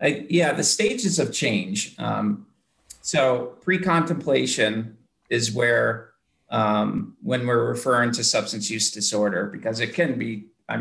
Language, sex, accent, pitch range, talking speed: English, male, American, 110-165 Hz, 130 wpm